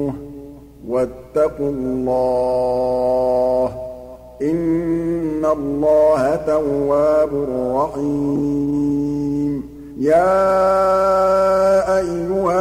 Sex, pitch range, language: male, 140-170 Hz, Arabic